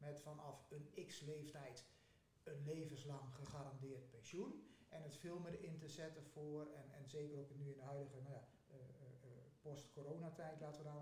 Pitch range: 145-185 Hz